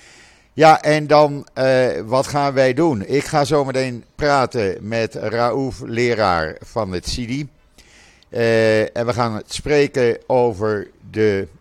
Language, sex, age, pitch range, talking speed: Dutch, male, 60-79, 95-125 Hz, 135 wpm